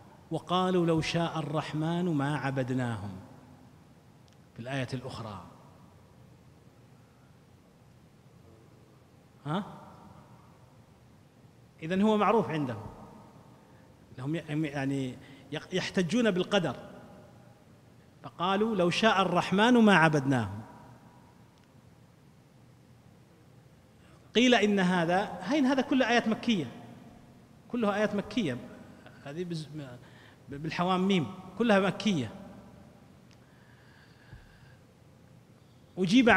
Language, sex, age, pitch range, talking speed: Arabic, male, 40-59, 140-200 Hz, 65 wpm